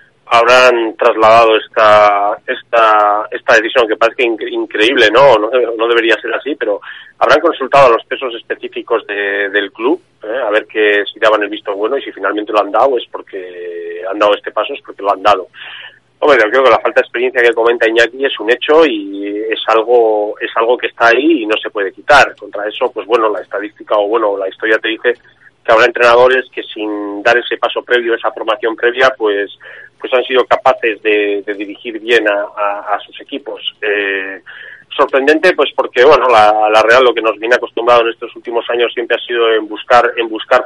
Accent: Spanish